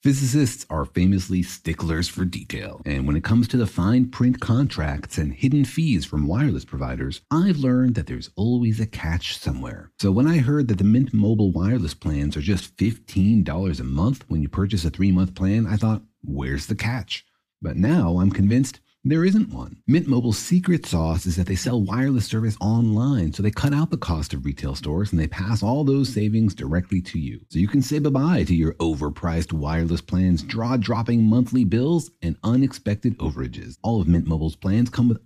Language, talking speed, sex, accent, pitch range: English, 195 wpm, male, American, 85-125 Hz